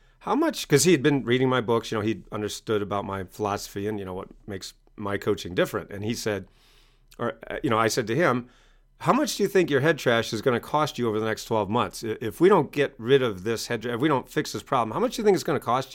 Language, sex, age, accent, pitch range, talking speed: English, male, 40-59, American, 110-145 Hz, 280 wpm